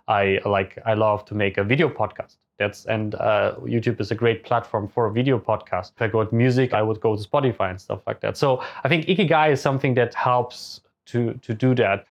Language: English